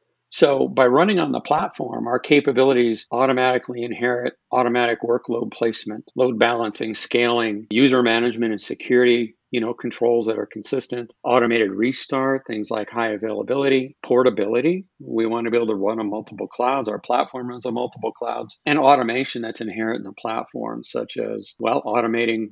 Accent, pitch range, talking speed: American, 115-130 Hz, 160 wpm